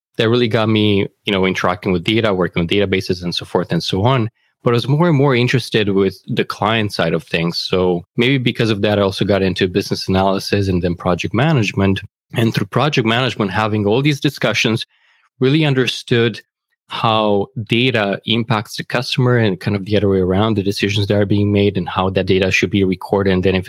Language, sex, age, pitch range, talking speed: English, male, 20-39, 95-115 Hz, 215 wpm